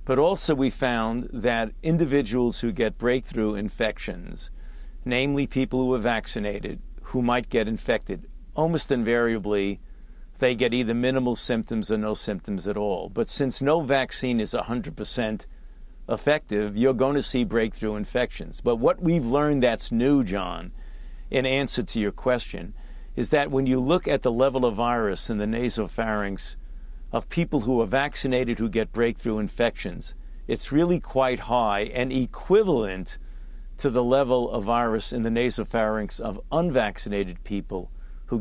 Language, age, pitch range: English, 50-69, 110-130 Hz